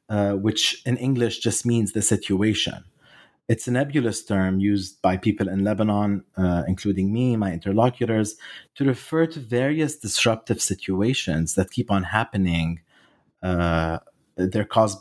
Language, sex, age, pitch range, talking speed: English, male, 30-49, 95-120 Hz, 140 wpm